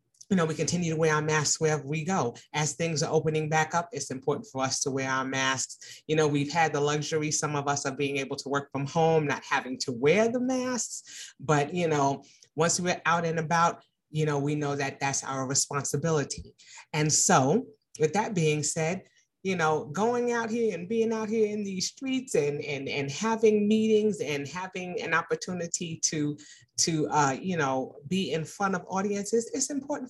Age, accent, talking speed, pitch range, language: 30-49, American, 205 wpm, 150-200 Hz, English